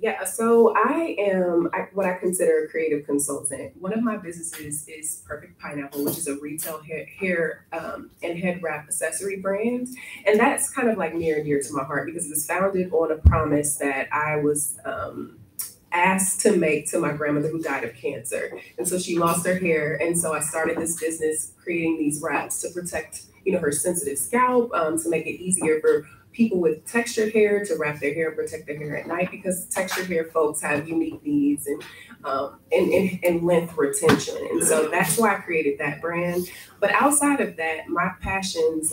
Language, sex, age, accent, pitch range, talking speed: English, female, 20-39, American, 155-200 Hz, 200 wpm